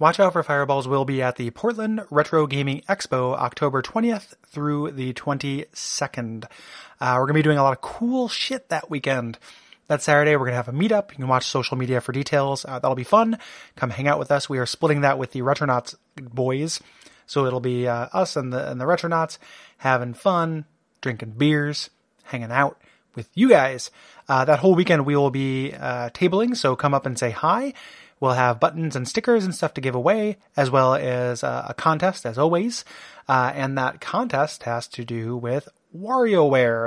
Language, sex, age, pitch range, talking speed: English, male, 30-49, 130-165 Hz, 200 wpm